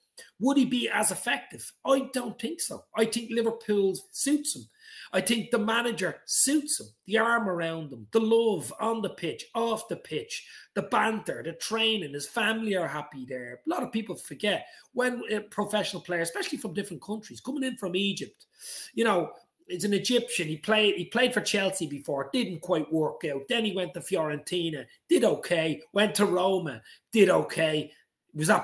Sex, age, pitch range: male, 30-49, 165-235 Hz